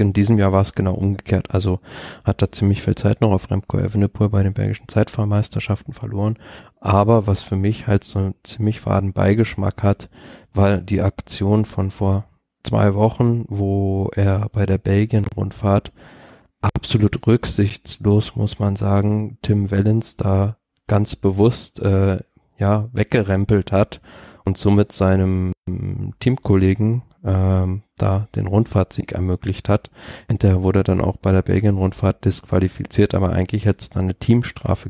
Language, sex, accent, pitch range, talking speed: German, male, German, 95-110 Hz, 145 wpm